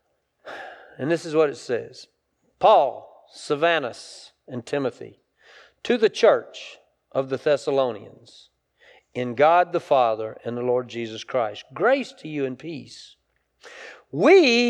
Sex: male